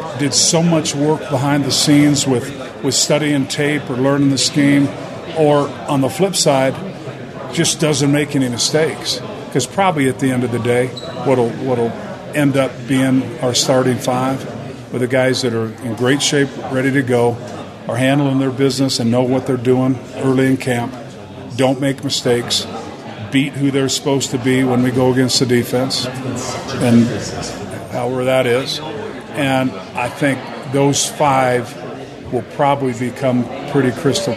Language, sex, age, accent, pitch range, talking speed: English, male, 50-69, American, 125-140 Hz, 160 wpm